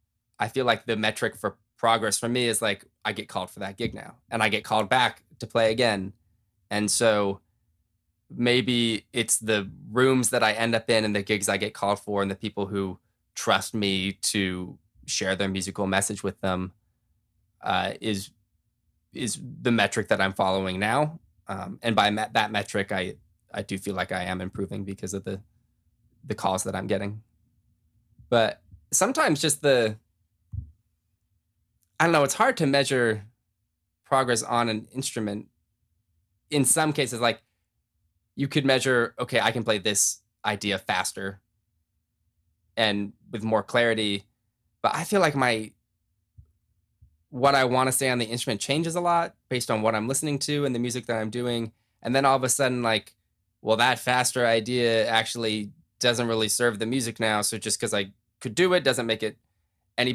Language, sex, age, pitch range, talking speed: English, male, 20-39, 100-120 Hz, 175 wpm